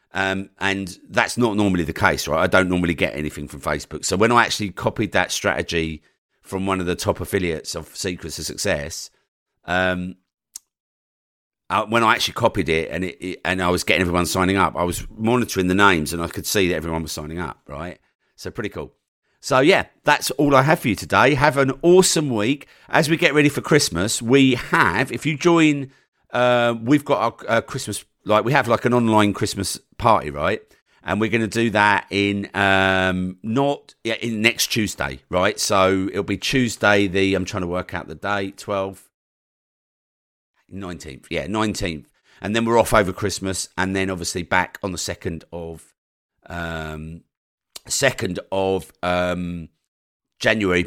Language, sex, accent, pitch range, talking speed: English, male, British, 90-110 Hz, 185 wpm